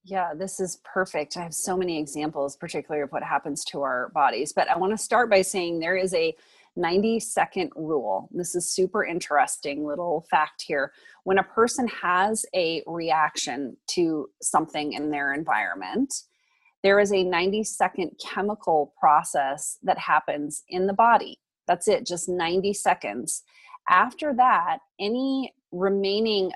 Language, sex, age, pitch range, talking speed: English, female, 30-49, 165-220 Hz, 150 wpm